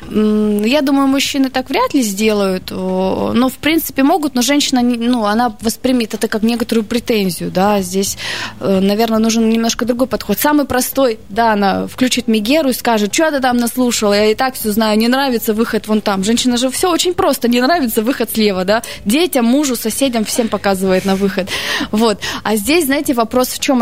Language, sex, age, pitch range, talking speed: Russian, female, 20-39, 210-260 Hz, 185 wpm